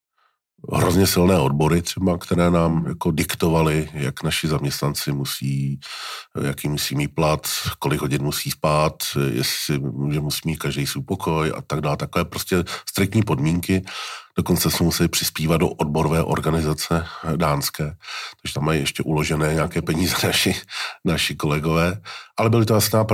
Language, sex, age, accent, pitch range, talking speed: Czech, male, 40-59, native, 75-90 Hz, 145 wpm